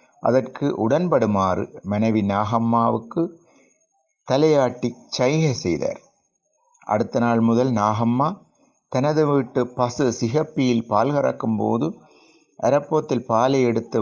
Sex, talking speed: male, 90 wpm